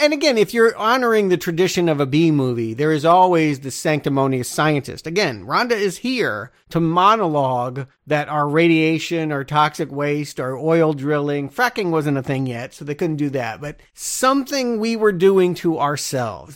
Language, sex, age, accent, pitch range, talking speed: English, male, 40-59, American, 140-170 Hz, 175 wpm